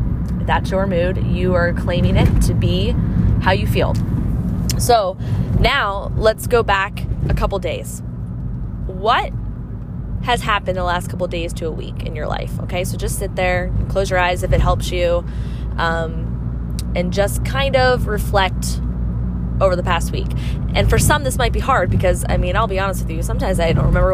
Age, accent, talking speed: 20-39, American, 190 wpm